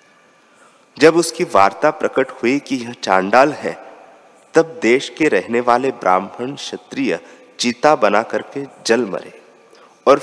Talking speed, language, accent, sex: 130 wpm, Hindi, native, male